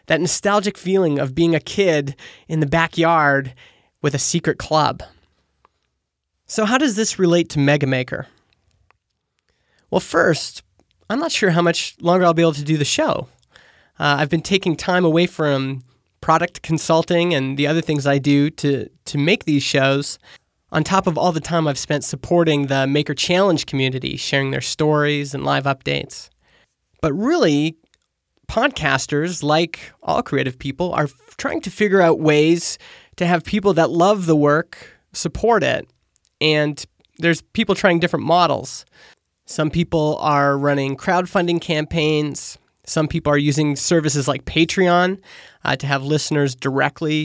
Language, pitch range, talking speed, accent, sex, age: English, 145-175 Hz, 155 wpm, American, male, 20-39